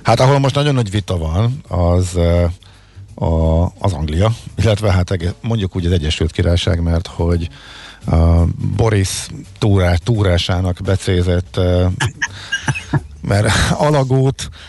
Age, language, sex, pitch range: 50-69, Hungarian, male, 85-105 Hz